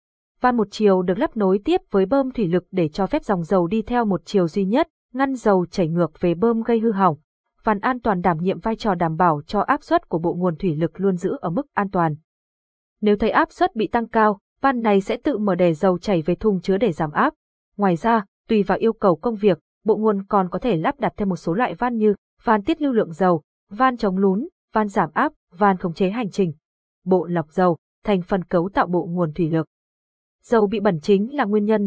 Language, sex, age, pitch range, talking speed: Vietnamese, female, 20-39, 180-230 Hz, 245 wpm